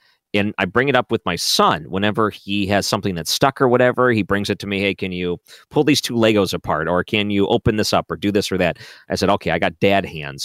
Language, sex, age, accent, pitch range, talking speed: English, male, 40-59, American, 95-115 Hz, 270 wpm